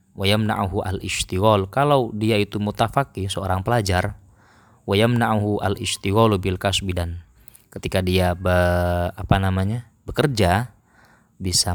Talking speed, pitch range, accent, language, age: 95 wpm, 90-100 Hz, native, Indonesian, 20-39